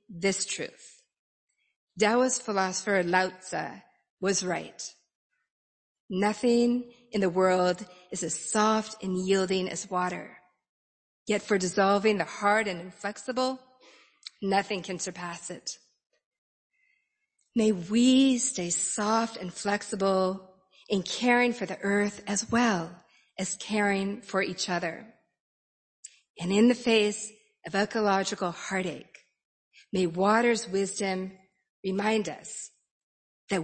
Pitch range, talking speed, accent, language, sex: 185-225 Hz, 110 wpm, American, English, female